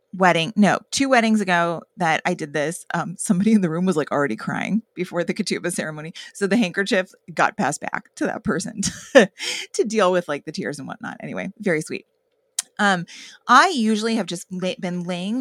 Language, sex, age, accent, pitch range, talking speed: English, female, 30-49, American, 175-230 Hz, 195 wpm